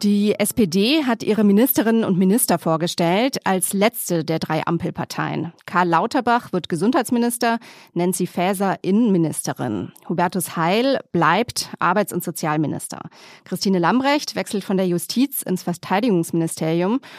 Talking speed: 120 wpm